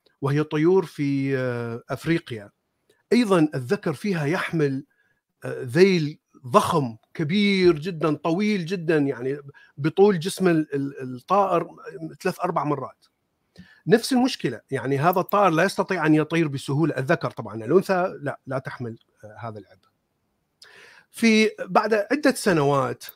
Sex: male